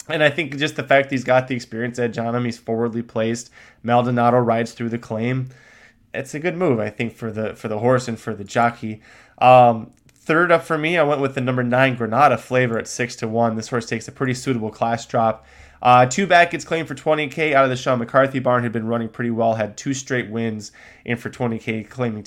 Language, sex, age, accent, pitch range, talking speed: English, male, 20-39, American, 115-140 Hz, 230 wpm